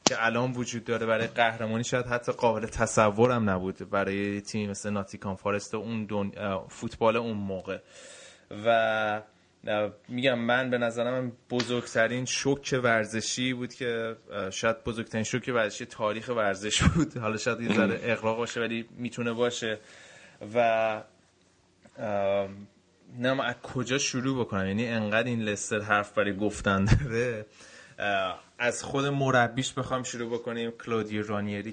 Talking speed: 135 wpm